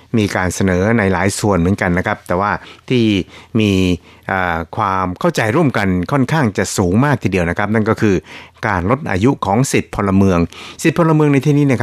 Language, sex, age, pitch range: Thai, male, 60-79, 90-110 Hz